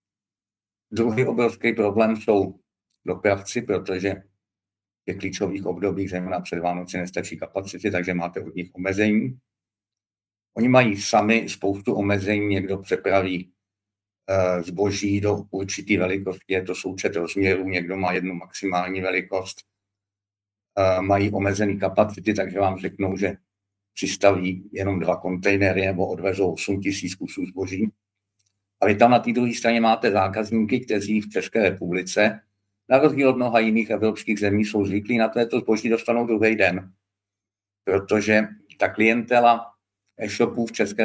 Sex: male